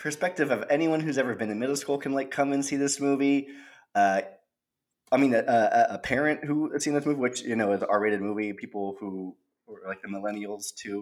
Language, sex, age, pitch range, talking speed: English, male, 20-39, 105-145 Hz, 235 wpm